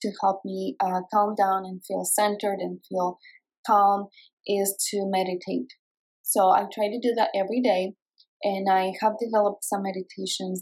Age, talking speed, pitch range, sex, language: 20-39, 165 wpm, 190-215 Hz, female, English